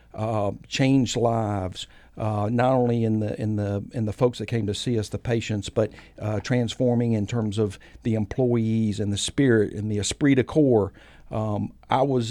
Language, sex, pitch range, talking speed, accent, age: English, male, 100-120 Hz, 190 wpm, American, 60-79